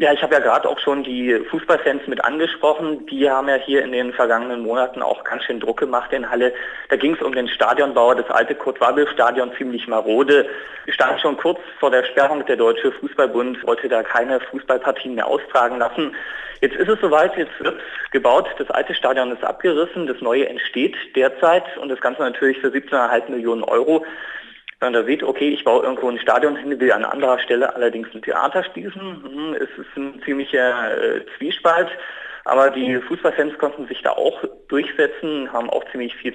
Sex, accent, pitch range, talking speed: male, German, 125-180 Hz, 185 wpm